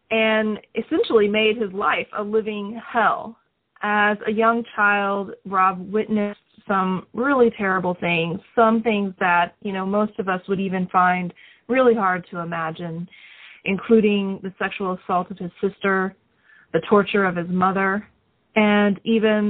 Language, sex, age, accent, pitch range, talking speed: English, female, 30-49, American, 190-230 Hz, 145 wpm